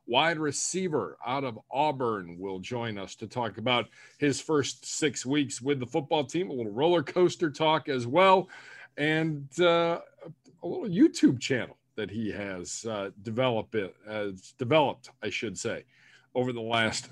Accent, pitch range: American, 125-160 Hz